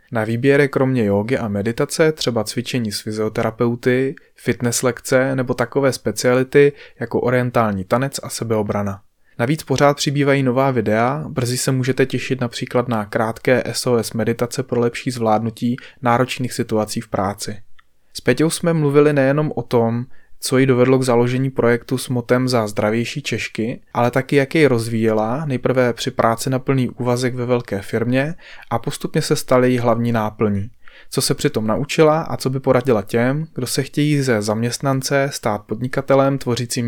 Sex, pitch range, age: male, 115-135 Hz, 20-39